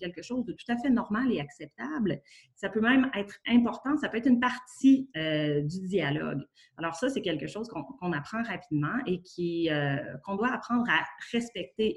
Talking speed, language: 195 wpm, French